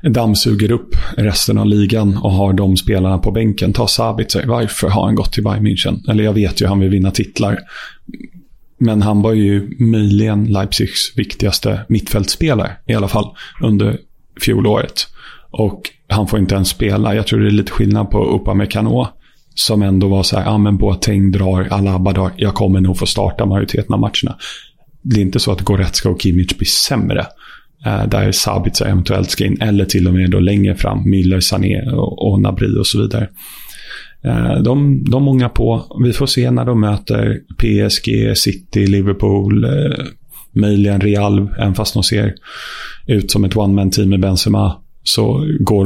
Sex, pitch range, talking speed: male, 95-110 Hz, 170 wpm